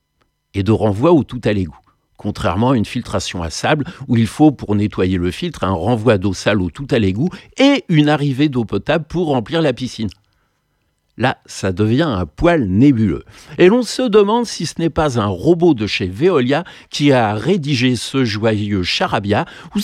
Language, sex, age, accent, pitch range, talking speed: French, male, 60-79, French, 105-170 Hz, 190 wpm